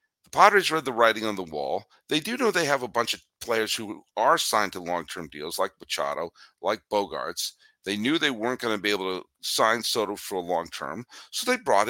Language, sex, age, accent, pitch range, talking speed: English, male, 50-69, American, 105-155 Hz, 220 wpm